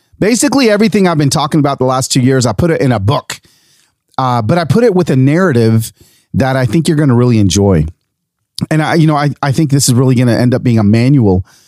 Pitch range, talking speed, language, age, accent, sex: 110-155 Hz, 250 wpm, English, 40-59, American, male